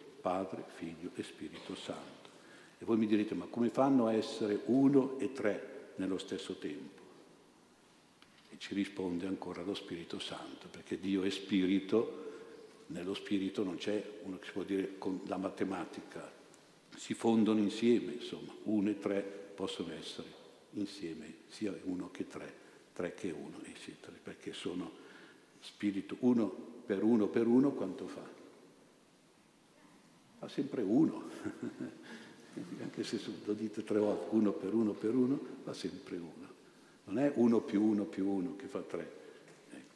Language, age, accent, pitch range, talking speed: Italian, 60-79, native, 100-120 Hz, 150 wpm